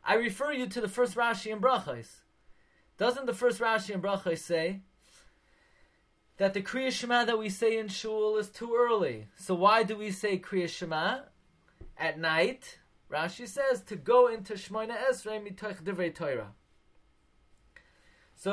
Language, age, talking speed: English, 20-39, 155 wpm